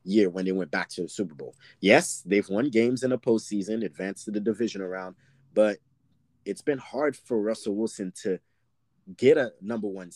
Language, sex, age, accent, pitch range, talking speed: English, male, 20-39, American, 100-120 Hz, 195 wpm